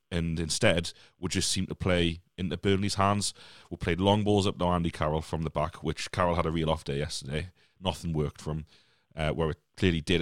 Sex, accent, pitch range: male, British, 85-100 Hz